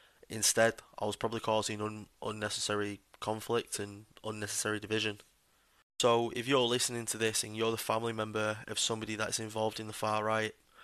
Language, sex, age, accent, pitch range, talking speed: English, male, 20-39, British, 105-115 Hz, 165 wpm